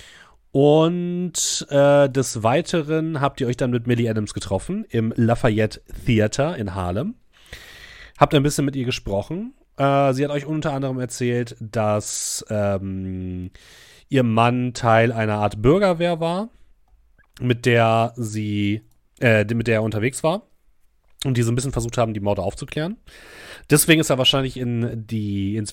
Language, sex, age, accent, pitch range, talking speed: German, male, 30-49, German, 105-135 Hz, 145 wpm